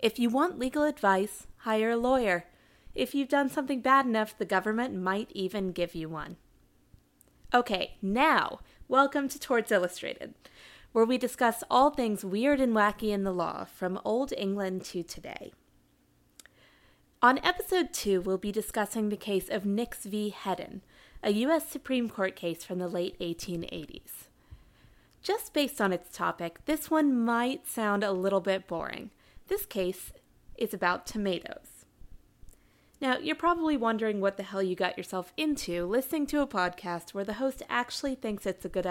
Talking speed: 160 wpm